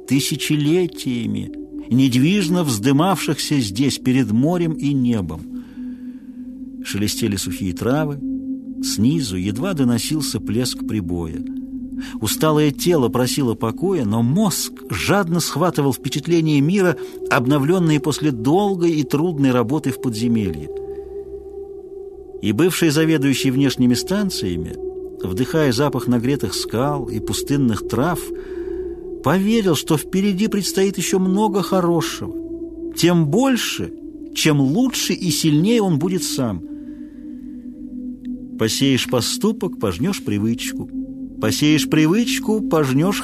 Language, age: Russian, 50-69